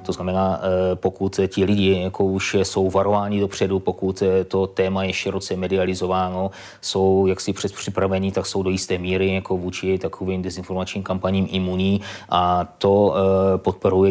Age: 20-39